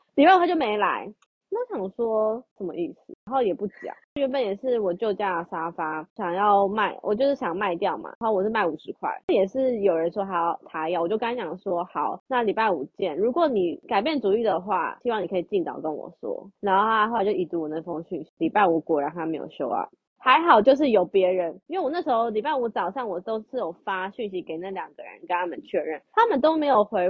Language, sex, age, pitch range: Chinese, female, 20-39, 185-290 Hz